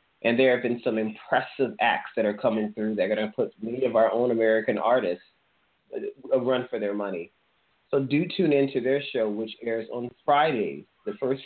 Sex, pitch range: male, 110-135 Hz